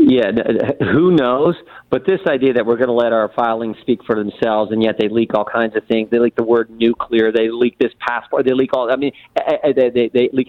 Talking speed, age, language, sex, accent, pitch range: 235 wpm, 40-59, English, male, American, 120-180 Hz